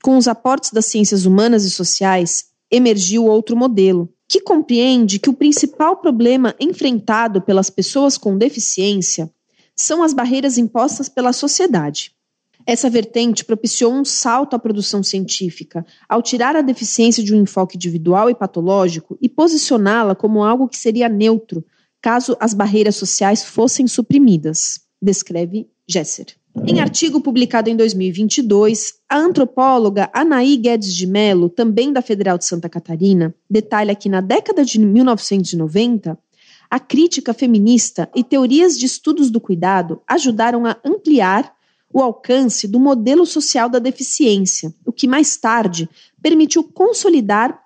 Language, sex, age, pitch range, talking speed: Spanish, female, 30-49, 200-265 Hz, 135 wpm